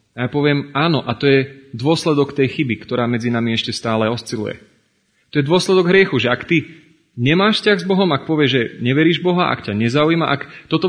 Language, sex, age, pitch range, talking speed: Slovak, male, 30-49, 120-160 Hz, 205 wpm